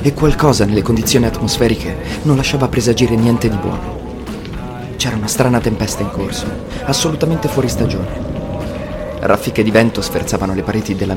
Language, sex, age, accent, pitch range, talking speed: Italian, male, 30-49, native, 100-120 Hz, 145 wpm